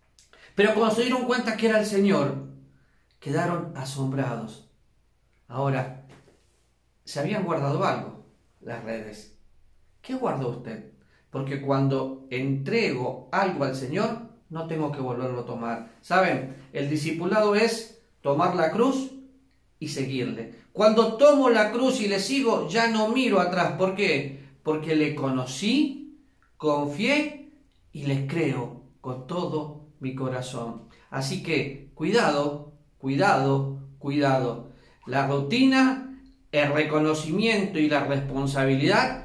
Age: 40-59